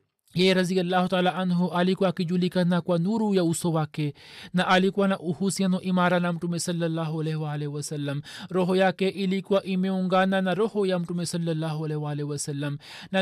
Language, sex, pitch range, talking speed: Swahili, male, 175-200 Hz, 140 wpm